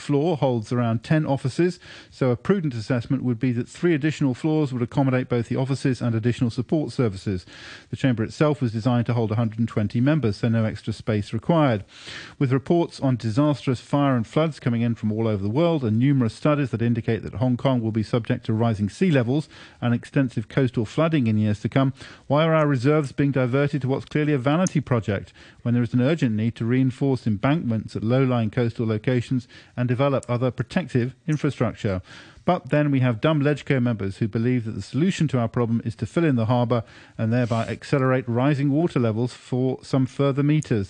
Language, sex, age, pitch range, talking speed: English, male, 40-59, 115-140 Hz, 200 wpm